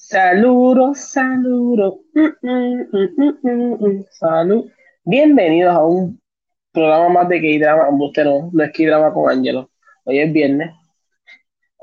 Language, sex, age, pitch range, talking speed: Spanish, male, 20-39, 155-265 Hz, 130 wpm